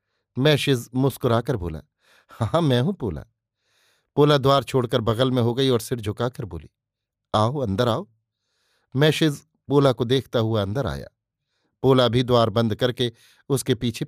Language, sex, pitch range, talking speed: Hindi, male, 110-130 Hz, 150 wpm